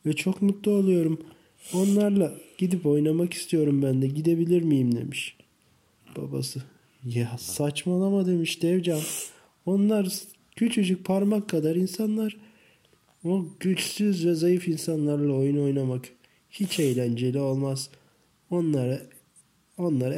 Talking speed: 105 wpm